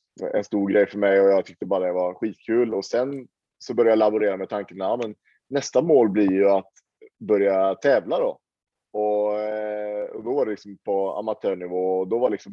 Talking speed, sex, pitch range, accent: 205 wpm, male, 95-125 Hz, Norwegian